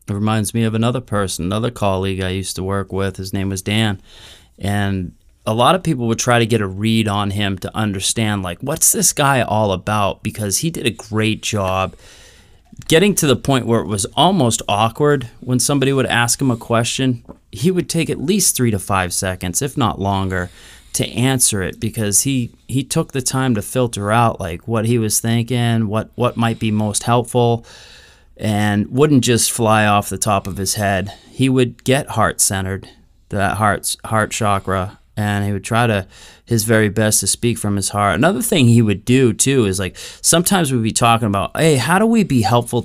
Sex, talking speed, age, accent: male, 205 wpm, 30-49, American